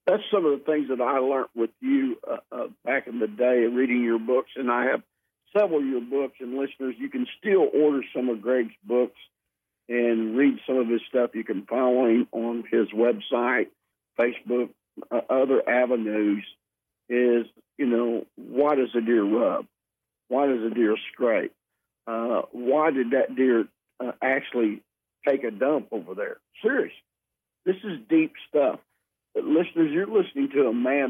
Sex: male